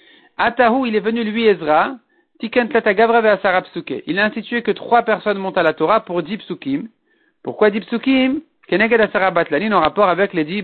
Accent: French